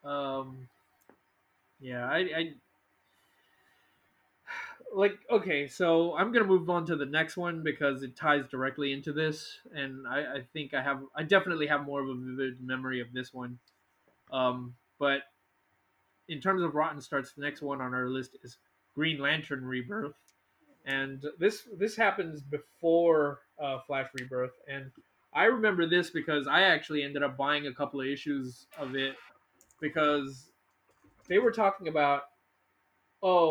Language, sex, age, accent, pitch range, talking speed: English, male, 20-39, American, 130-155 Hz, 155 wpm